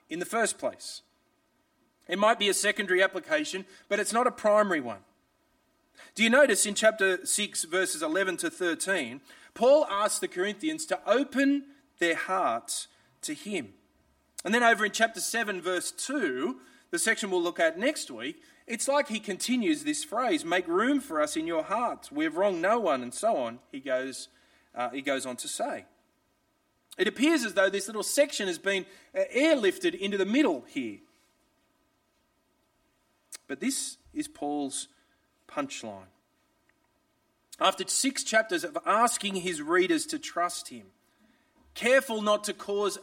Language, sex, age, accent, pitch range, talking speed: English, male, 30-49, Australian, 205-315 Hz, 160 wpm